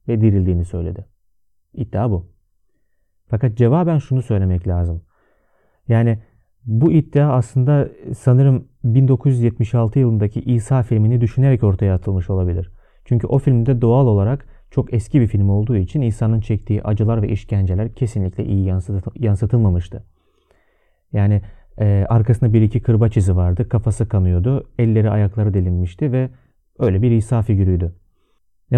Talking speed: 130 wpm